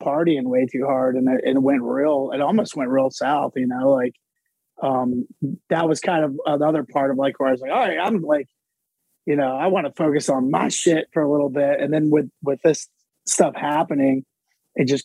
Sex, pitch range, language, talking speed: male, 130-160 Hz, English, 220 wpm